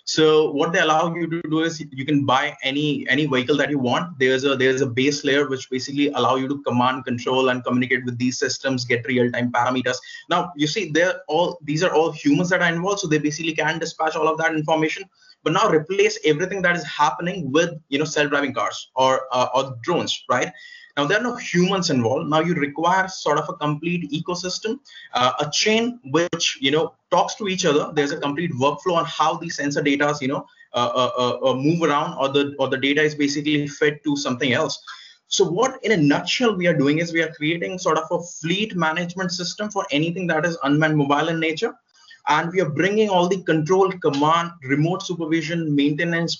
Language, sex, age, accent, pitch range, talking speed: English, male, 20-39, Indian, 145-180 Hz, 210 wpm